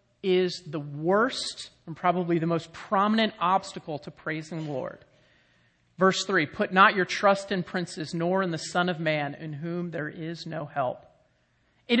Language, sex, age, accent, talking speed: English, male, 40-59, American, 170 wpm